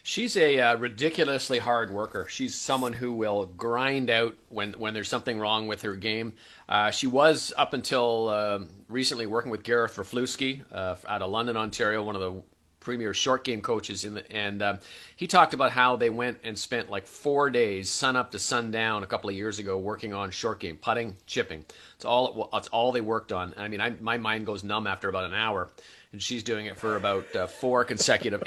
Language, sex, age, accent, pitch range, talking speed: English, male, 40-59, American, 105-130 Hz, 210 wpm